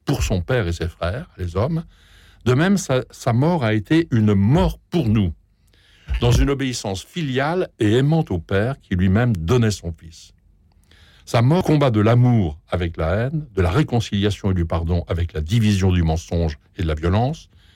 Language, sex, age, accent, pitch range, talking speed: French, male, 60-79, French, 90-120 Hz, 185 wpm